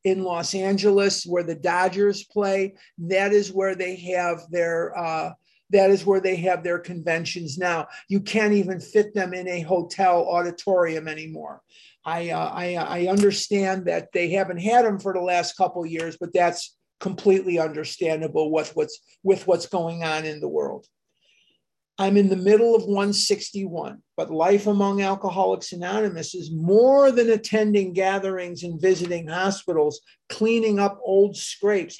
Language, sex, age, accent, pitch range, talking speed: English, male, 50-69, American, 175-205 Hz, 160 wpm